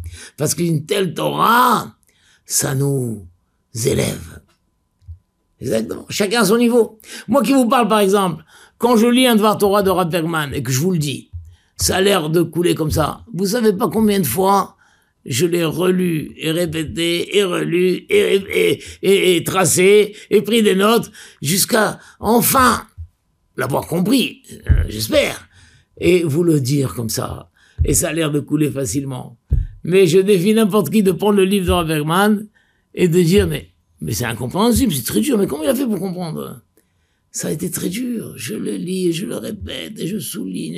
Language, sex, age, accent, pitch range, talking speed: French, male, 60-79, French, 135-200 Hz, 180 wpm